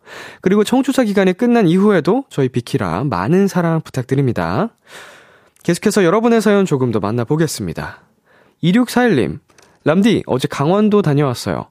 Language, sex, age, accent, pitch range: Korean, male, 20-39, native, 120-195 Hz